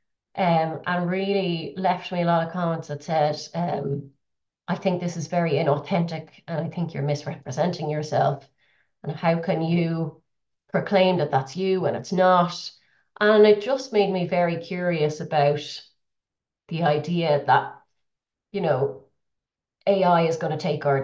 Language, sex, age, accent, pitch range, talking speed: English, female, 30-49, Irish, 145-175 Hz, 155 wpm